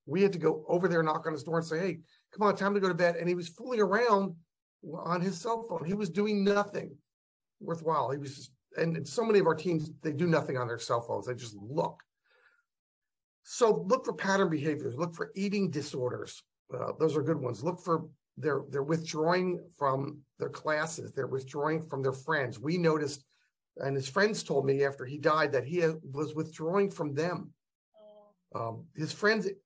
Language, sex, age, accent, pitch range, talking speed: English, male, 50-69, American, 140-185 Hz, 200 wpm